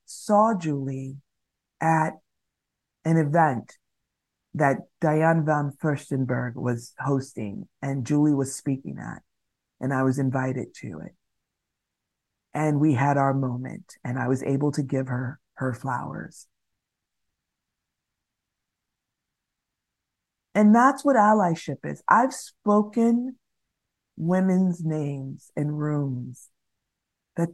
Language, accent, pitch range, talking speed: English, American, 140-205 Hz, 105 wpm